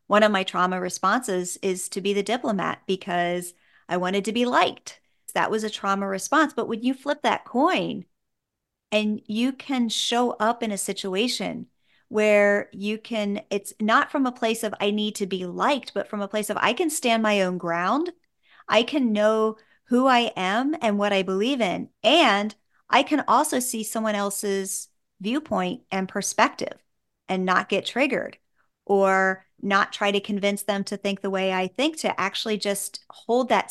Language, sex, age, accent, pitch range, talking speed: English, female, 40-59, American, 195-245 Hz, 180 wpm